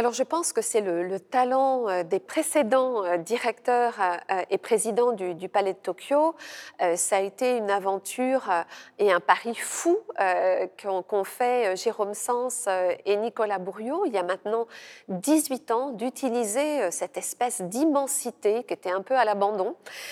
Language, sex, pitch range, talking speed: French, female, 195-260 Hz, 150 wpm